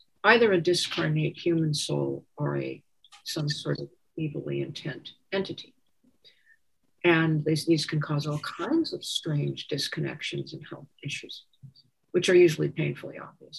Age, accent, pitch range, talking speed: 50-69, American, 150-180 Hz, 135 wpm